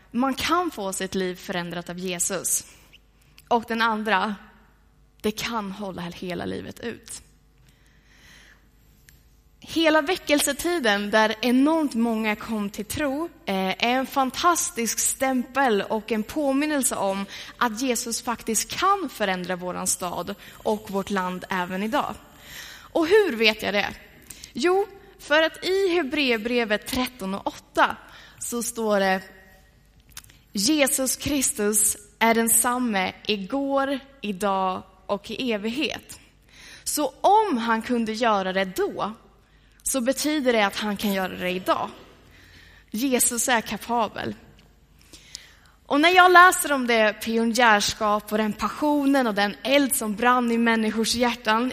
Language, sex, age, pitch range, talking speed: Swedish, female, 20-39, 200-270 Hz, 125 wpm